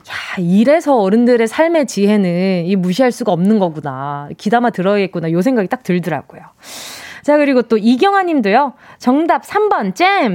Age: 20-39